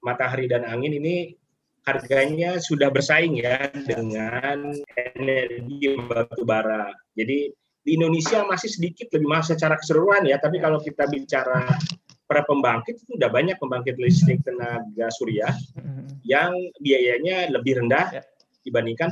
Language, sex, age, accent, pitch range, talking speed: Indonesian, male, 30-49, native, 115-155 Hz, 125 wpm